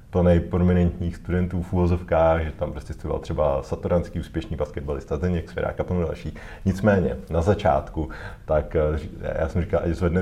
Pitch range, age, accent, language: 80-90 Hz, 30-49, native, Czech